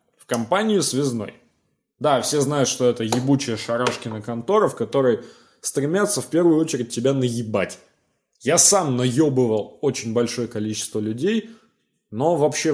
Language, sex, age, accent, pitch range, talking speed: Russian, male, 20-39, native, 115-145 Hz, 125 wpm